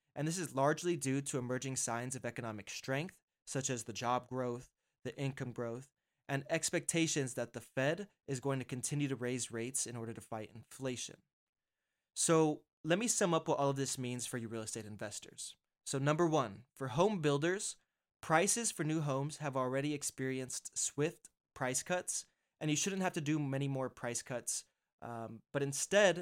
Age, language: 20-39, English